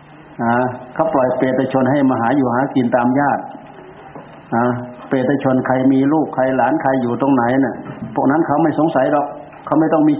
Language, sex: Thai, male